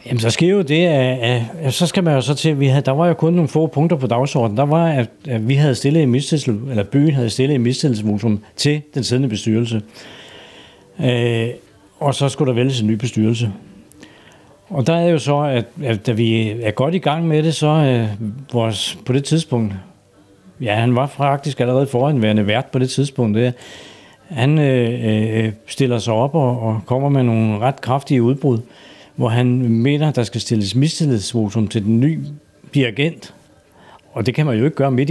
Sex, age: male, 60-79